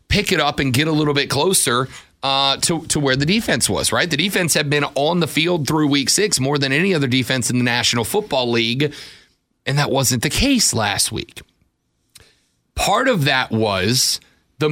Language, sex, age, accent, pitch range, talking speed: English, male, 40-59, American, 125-160 Hz, 200 wpm